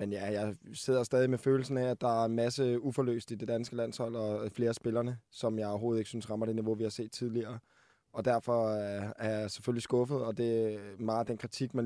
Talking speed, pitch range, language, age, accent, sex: 245 wpm, 110-125 Hz, Danish, 20-39, native, male